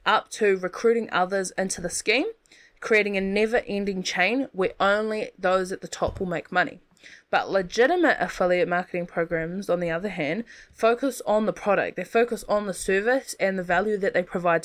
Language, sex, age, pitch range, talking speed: English, female, 20-39, 180-220 Hz, 180 wpm